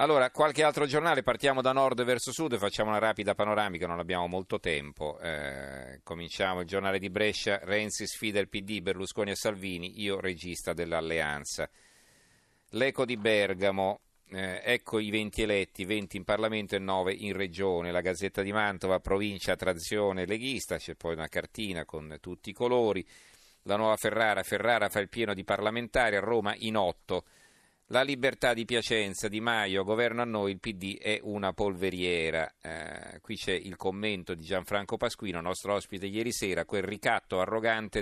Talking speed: 165 wpm